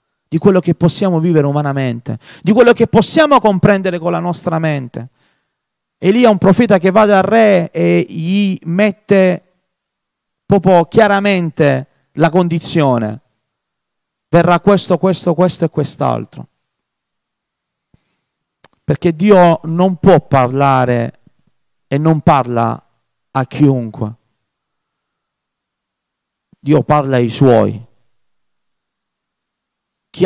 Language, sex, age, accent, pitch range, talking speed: Italian, male, 40-59, native, 140-210 Hz, 105 wpm